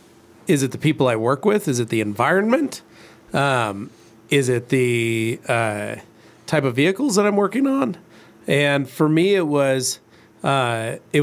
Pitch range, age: 125-160 Hz, 40-59